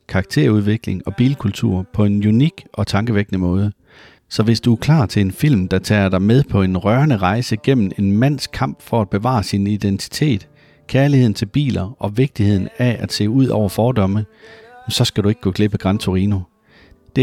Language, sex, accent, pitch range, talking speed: Danish, male, native, 95-120 Hz, 190 wpm